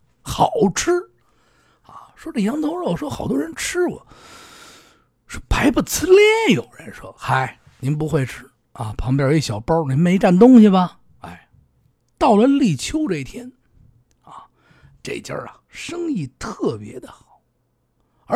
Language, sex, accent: Chinese, male, native